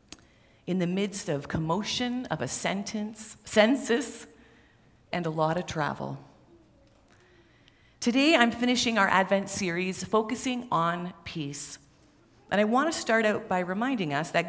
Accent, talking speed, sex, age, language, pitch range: American, 135 wpm, female, 40-59, English, 155-225 Hz